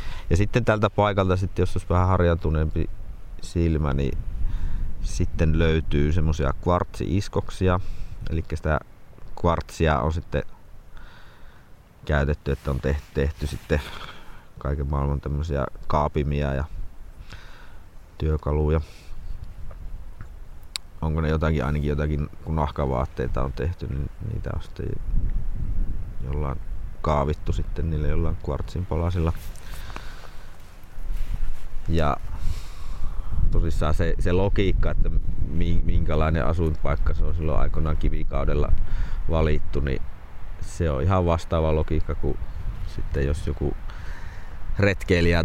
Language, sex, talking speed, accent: Finnish, male, 100 wpm, native